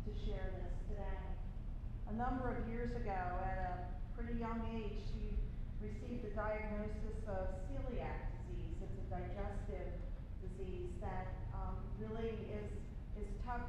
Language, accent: English, American